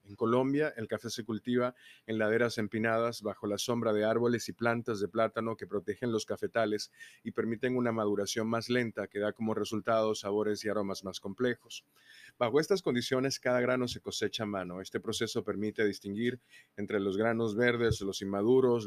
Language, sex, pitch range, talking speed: Spanish, male, 105-120 Hz, 180 wpm